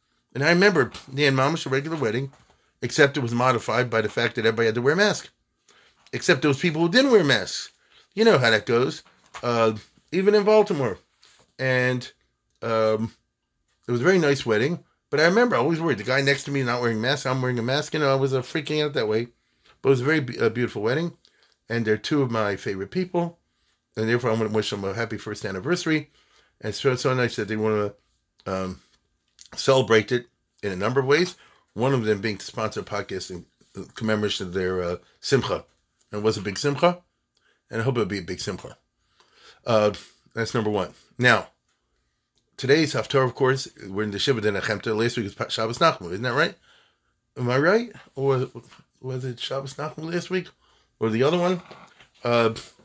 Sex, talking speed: male, 210 wpm